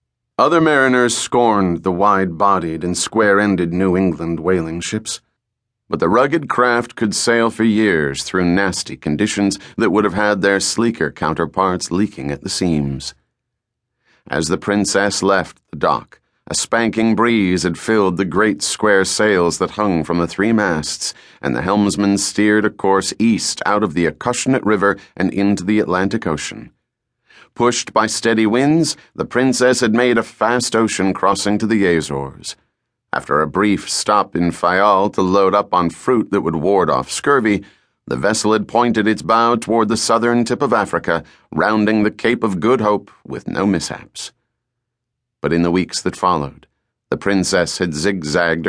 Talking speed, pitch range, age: 165 wpm, 90-115 Hz, 40-59